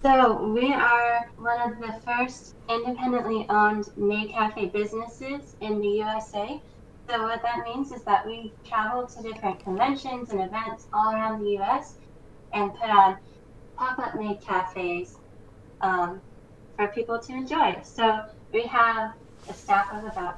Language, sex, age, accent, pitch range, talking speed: English, female, 10-29, American, 200-235 Hz, 145 wpm